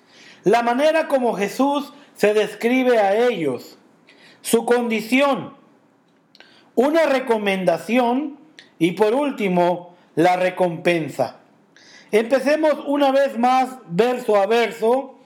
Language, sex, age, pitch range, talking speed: English, male, 50-69, 205-270 Hz, 95 wpm